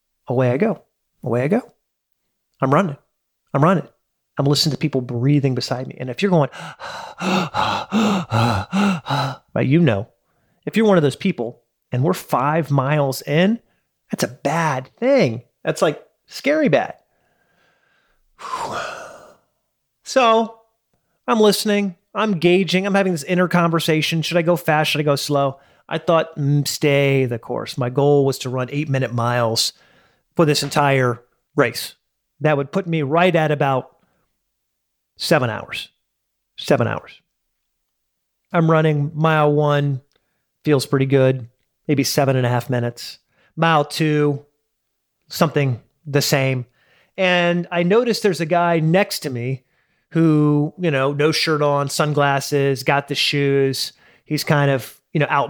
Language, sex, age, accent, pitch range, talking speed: English, male, 30-49, American, 135-170 Hz, 150 wpm